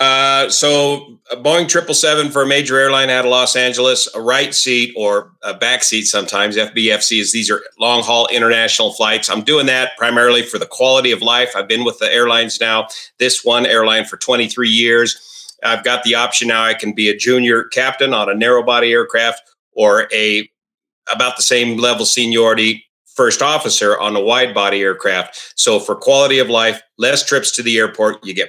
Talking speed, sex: 195 wpm, male